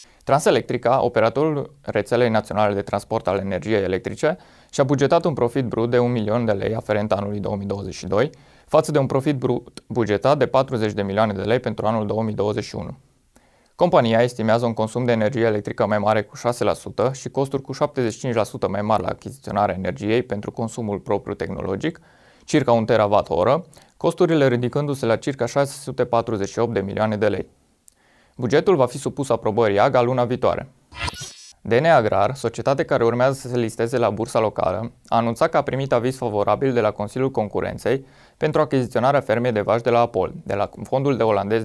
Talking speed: 165 wpm